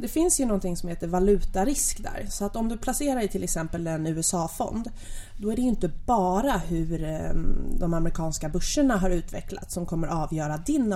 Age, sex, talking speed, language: 20-39, female, 185 wpm, Swedish